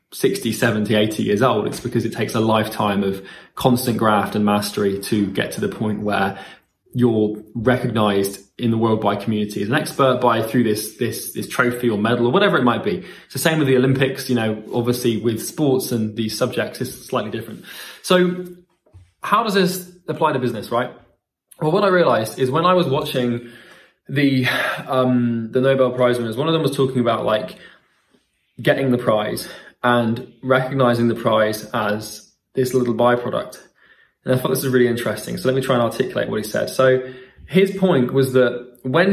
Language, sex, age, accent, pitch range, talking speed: English, male, 20-39, British, 110-135 Hz, 190 wpm